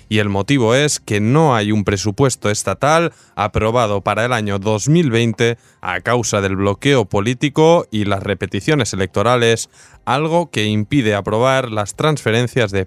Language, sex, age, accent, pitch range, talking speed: Spanish, male, 20-39, Spanish, 105-140 Hz, 145 wpm